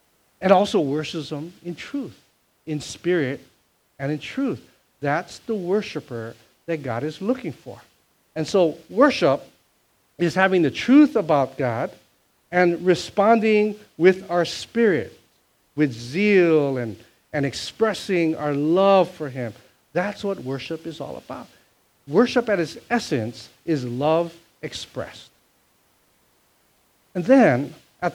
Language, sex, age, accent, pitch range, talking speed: English, male, 50-69, American, 140-180 Hz, 125 wpm